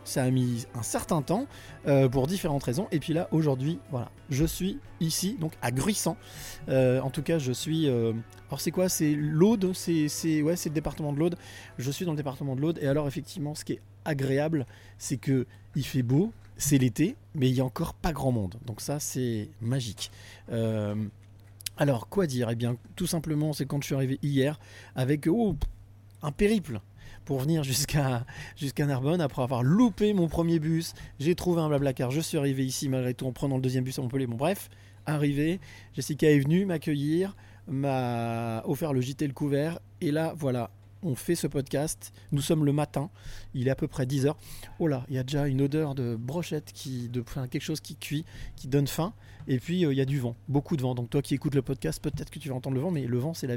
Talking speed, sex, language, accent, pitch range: 225 wpm, male, French, French, 120-155 Hz